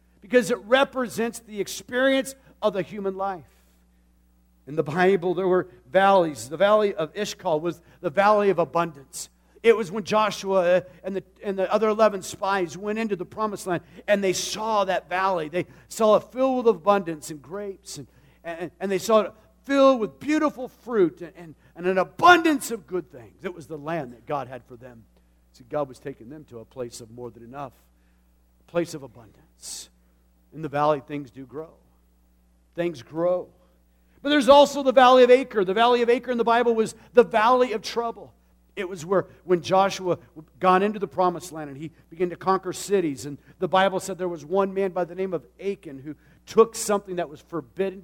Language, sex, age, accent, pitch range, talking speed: English, male, 50-69, American, 140-200 Hz, 200 wpm